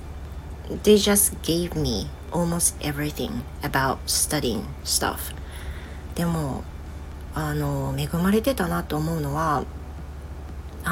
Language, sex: Japanese, female